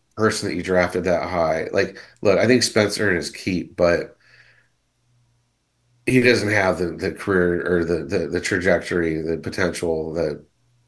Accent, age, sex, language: American, 30-49, male, English